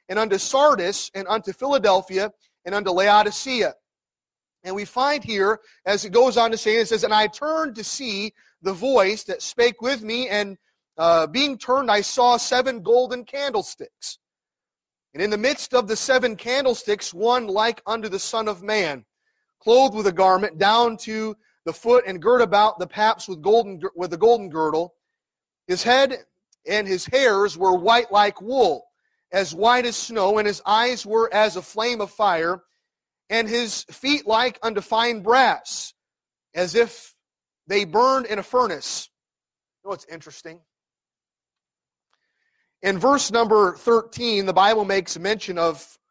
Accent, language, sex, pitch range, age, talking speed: American, English, male, 190-240 Hz, 30-49, 160 wpm